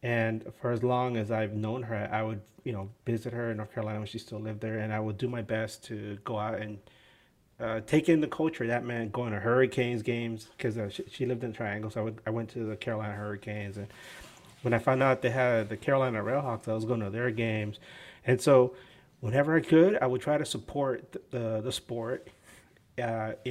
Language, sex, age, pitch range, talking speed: English, male, 30-49, 110-130 Hz, 230 wpm